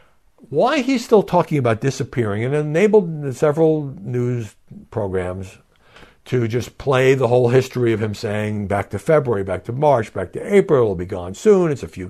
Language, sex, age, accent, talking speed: English, male, 60-79, American, 180 wpm